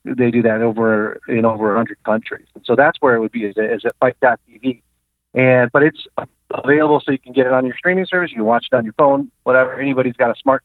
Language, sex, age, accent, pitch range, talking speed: English, male, 40-59, American, 110-135 Hz, 250 wpm